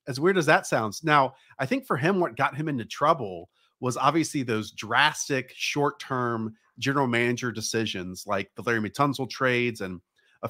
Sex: male